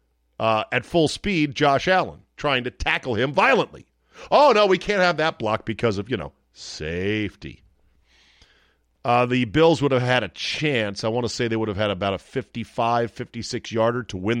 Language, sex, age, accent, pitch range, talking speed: English, male, 40-59, American, 90-140 Hz, 190 wpm